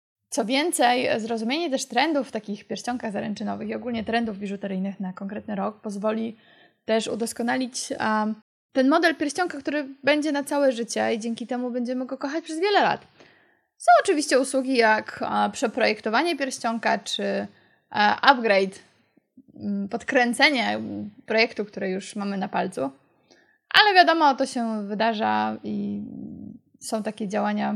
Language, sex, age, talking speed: Polish, female, 20-39, 130 wpm